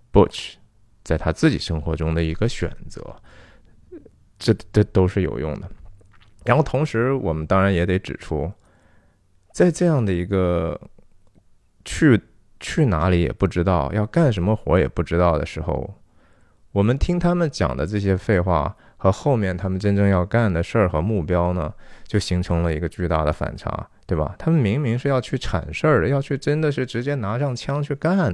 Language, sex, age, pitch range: Chinese, male, 20-39, 90-130 Hz